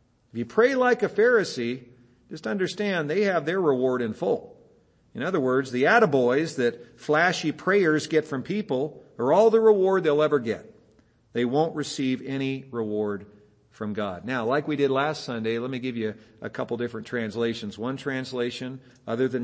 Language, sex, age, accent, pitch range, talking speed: English, male, 50-69, American, 110-155 Hz, 175 wpm